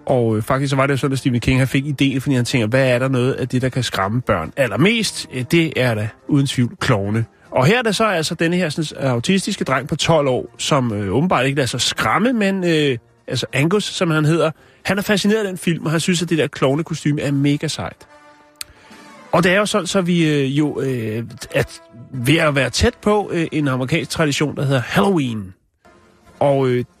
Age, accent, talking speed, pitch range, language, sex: 30-49, native, 230 wpm, 125-165 Hz, Danish, male